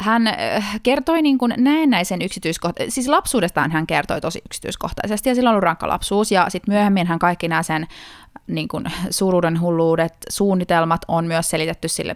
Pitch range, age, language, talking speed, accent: 165-205 Hz, 20-39, Finnish, 150 wpm, native